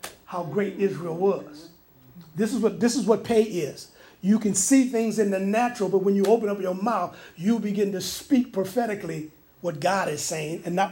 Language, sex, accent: English, male, American